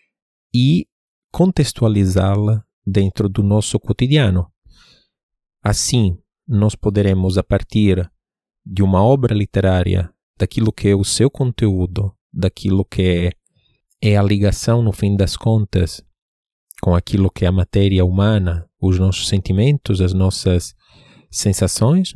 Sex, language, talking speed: male, Portuguese, 120 wpm